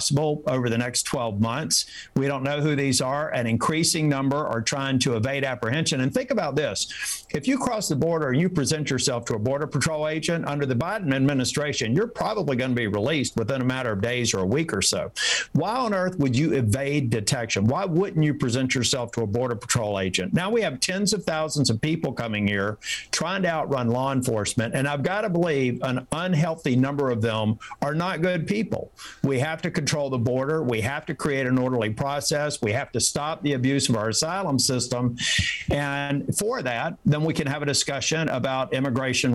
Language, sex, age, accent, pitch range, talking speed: English, male, 50-69, American, 125-160 Hz, 210 wpm